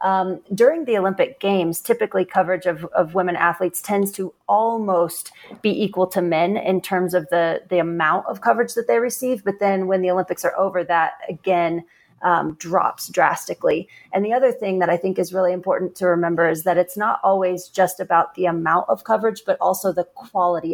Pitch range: 175-200 Hz